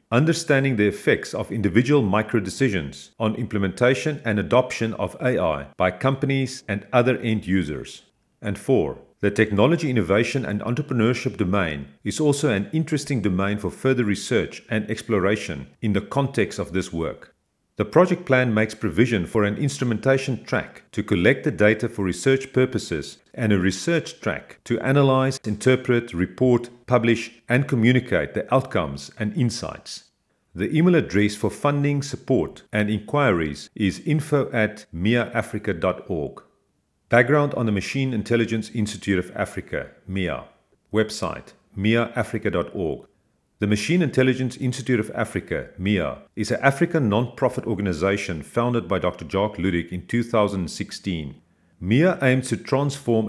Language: English